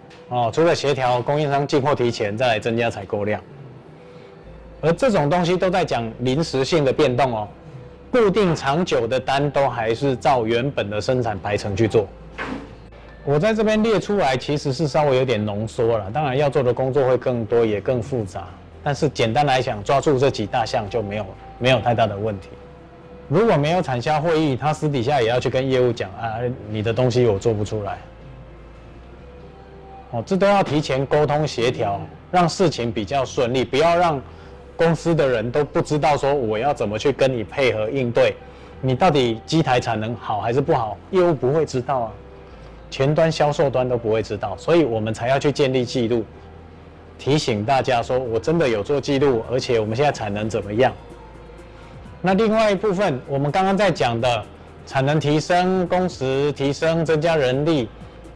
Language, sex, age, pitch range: Chinese, male, 20-39, 115-160 Hz